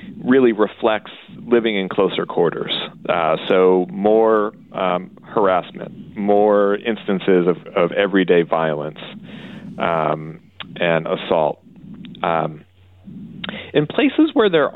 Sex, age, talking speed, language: male, 40-59, 100 wpm, English